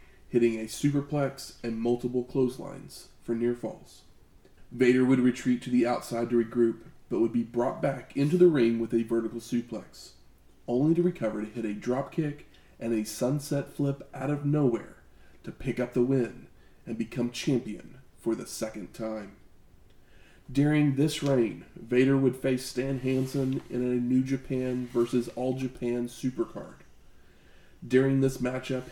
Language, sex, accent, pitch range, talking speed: English, male, American, 115-135 Hz, 155 wpm